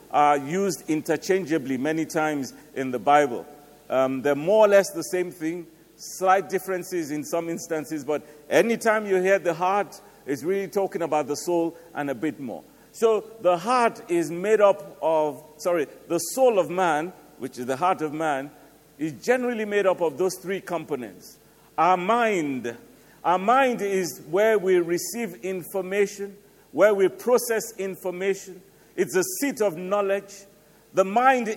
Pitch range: 155-205 Hz